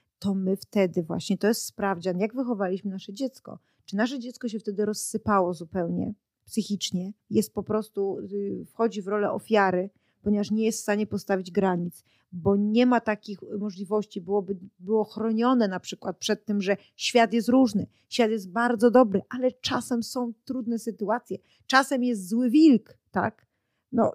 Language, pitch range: Polish, 200-250 Hz